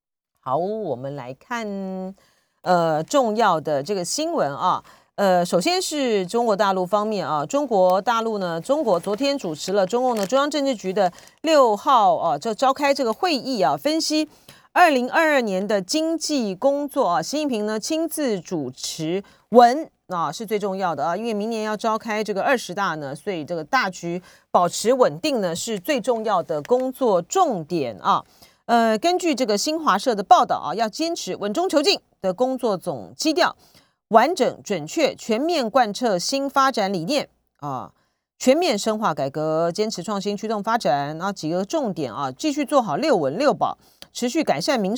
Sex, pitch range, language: female, 180-275 Hz, Chinese